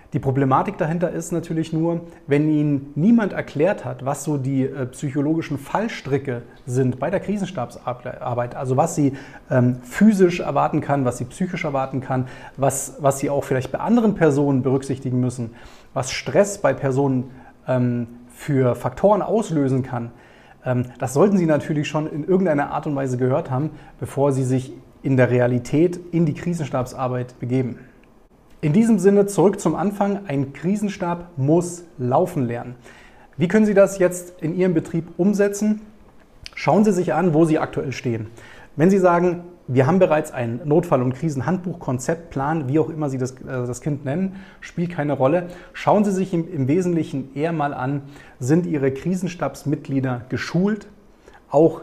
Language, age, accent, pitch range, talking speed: German, 30-49, German, 130-175 Hz, 155 wpm